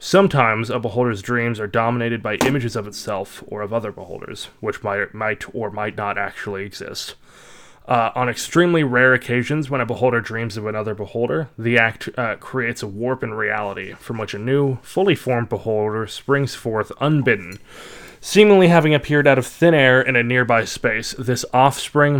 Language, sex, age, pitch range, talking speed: English, male, 20-39, 110-135 Hz, 175 wpm